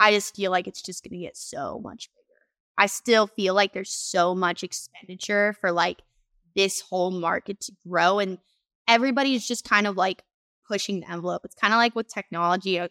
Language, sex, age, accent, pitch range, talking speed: English, female, 20-39, American, 180-210 Hz, 200 wpm